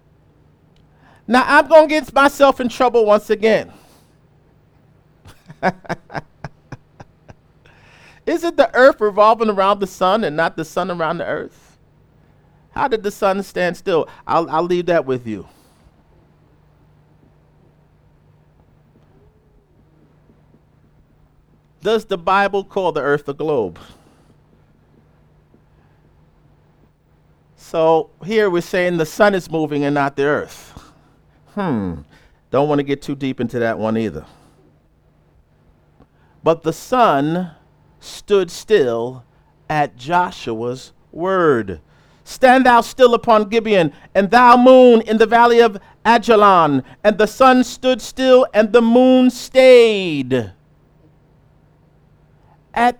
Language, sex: English, male